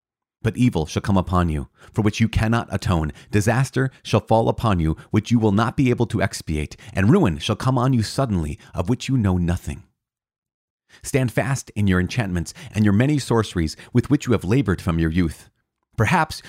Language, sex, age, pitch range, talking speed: English, male, 30-49, 85-120 Hz, 195 wpm